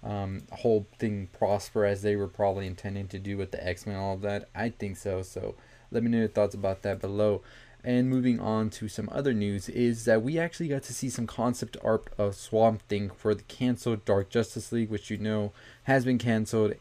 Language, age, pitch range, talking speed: English, 20-39, 105-125 Hz, 220 wpm